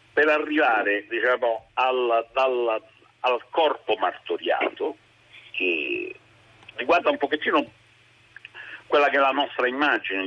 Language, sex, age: Italian, male, 50-69